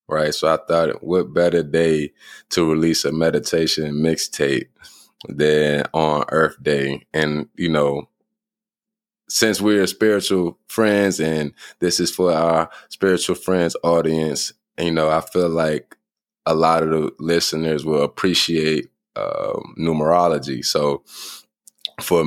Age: 20-39